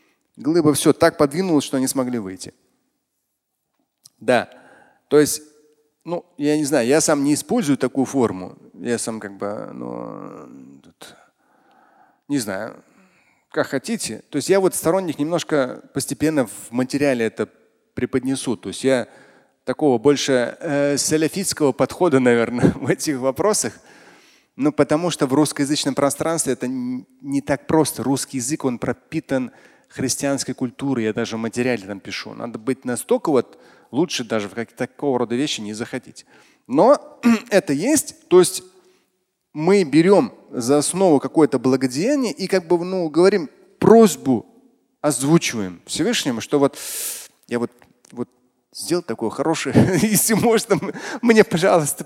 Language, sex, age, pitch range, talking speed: Russian, male, 30-49, 125-170 Hz, 135 wpm